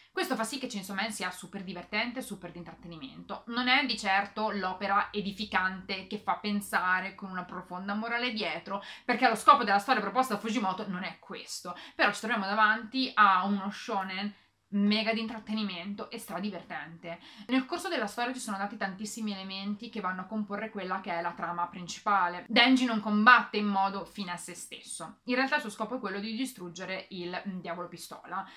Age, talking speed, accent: 20-39, 190 wpm, native